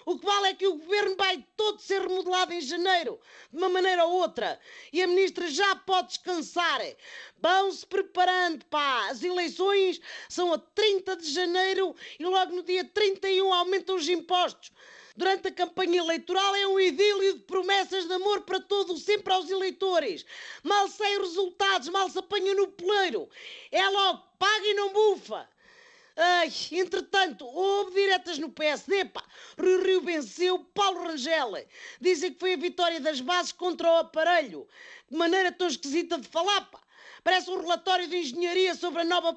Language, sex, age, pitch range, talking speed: Portuguese, female, 40-59, 350-390 Hz, 165 wpm